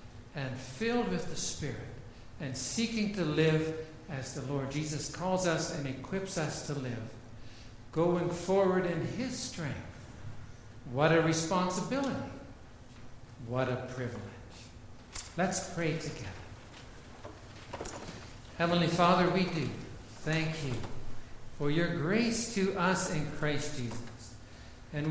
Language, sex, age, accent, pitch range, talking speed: English, male, 60-79, American, 125-180 Hz, 115 wpm